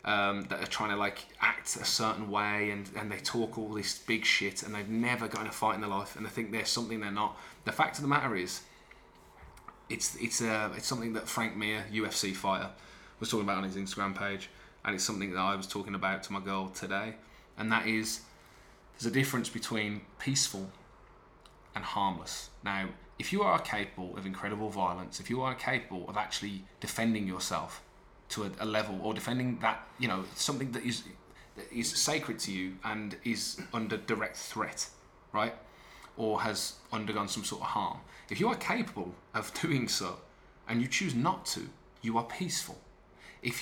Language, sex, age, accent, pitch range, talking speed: English, male, 20-39, British, 100-120 Hz, 195 wpm